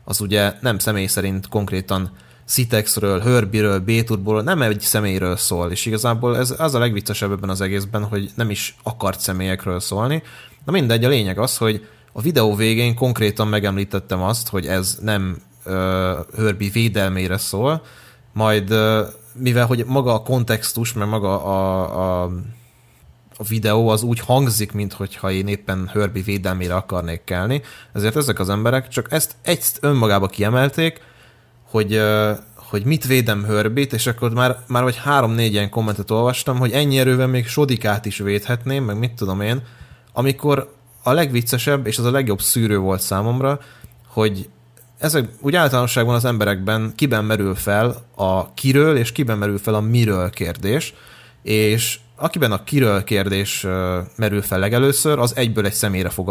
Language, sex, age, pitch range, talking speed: Hungarian, male, 20-39, 100-125 Hz, 155 wpm